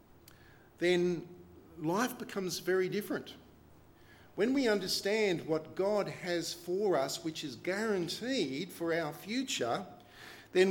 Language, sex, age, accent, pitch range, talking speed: English, male, 50-69, Australian, 125-175 Hz, 110 wpm